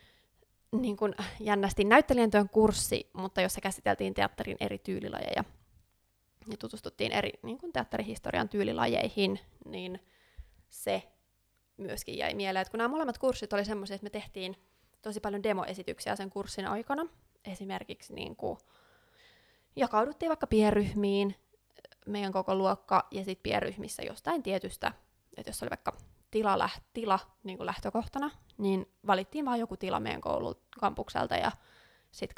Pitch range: 190-225 Hz